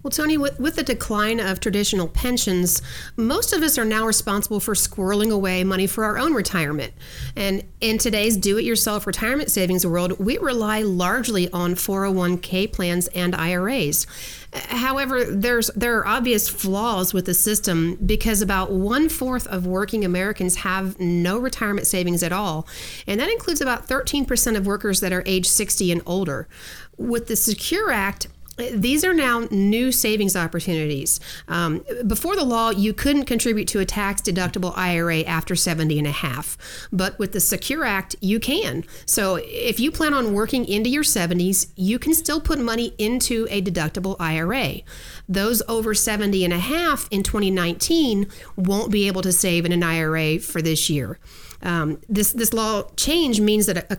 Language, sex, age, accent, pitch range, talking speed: English, female, 40-59, American, 180-230 Hz, 165 wpm